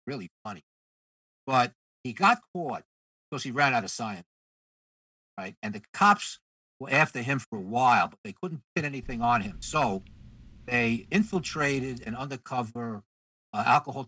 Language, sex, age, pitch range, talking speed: English, male, 50-69, 110-165 Hz, 150 wpm